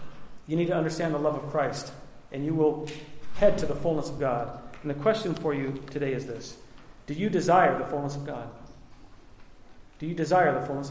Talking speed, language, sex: 205 wpm, English, male